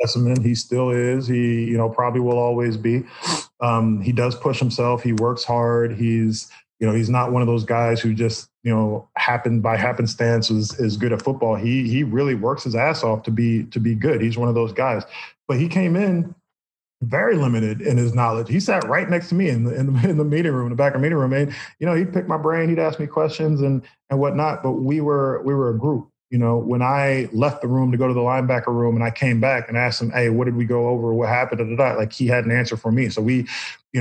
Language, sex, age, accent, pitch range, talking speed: English, male, 20-39, American, 115-135 Hz, 260 wpm